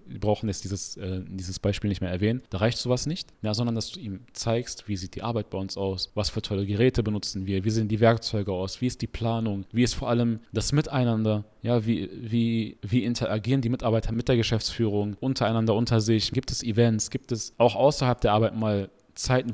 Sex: male